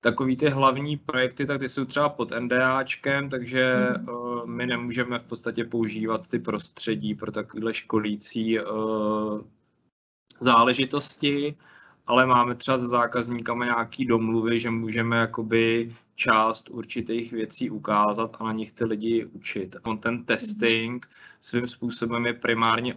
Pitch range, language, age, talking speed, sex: 110-125 Hz, Czech, 20-39, 130 wpm, male